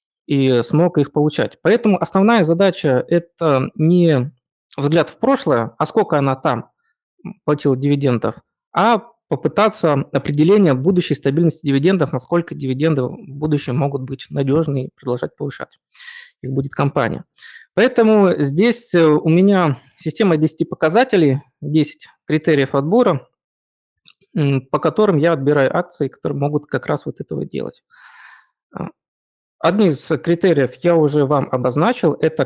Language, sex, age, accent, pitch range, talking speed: Russian, male, 20-39, native, 140-180 Hz, 125 wpm